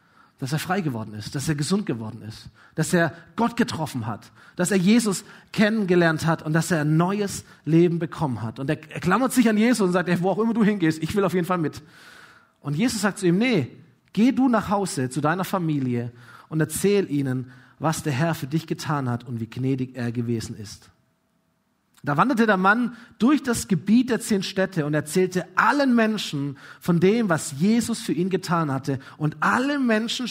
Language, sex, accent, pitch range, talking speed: German, male, German, 135-195 Hz, 200 wpm